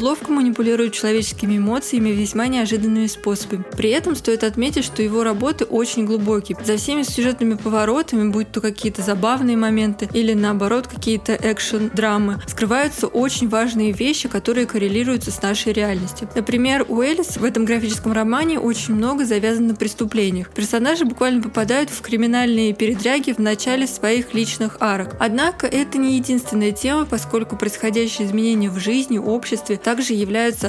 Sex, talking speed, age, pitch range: female, 145 wpm, 20-39, 215-245 Hz